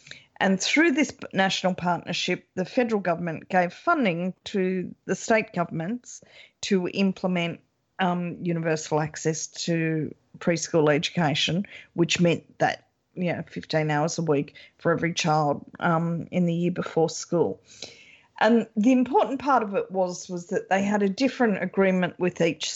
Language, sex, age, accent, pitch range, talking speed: English, female, 40-59, Australian, 170-215 Hz, 150 wpm